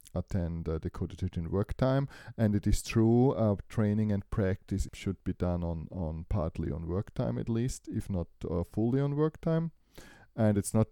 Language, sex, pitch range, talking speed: English, male, 90-110 Hz, 200 wpm